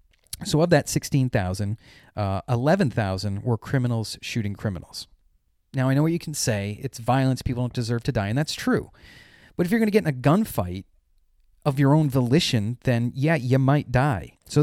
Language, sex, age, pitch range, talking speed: English, male, 30-49, 105-145 Hz, 185 wpm